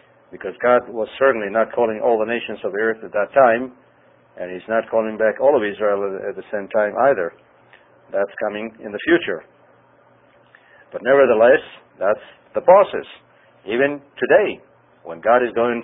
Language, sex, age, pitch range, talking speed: English, male, 50-69, 110-125 Hz, 165 wpm